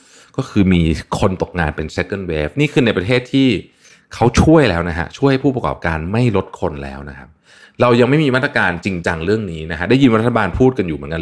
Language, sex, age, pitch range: Thai, male, 20-39, 80-110 Hz